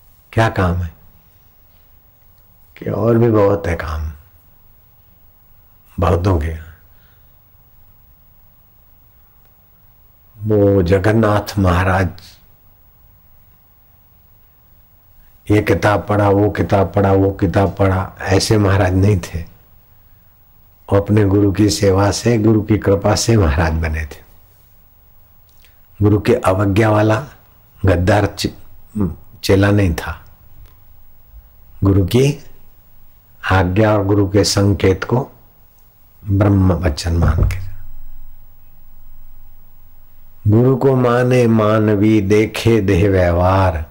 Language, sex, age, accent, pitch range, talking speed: Hindi, male, 60-79, native, 90-105 Hz, 90 wpm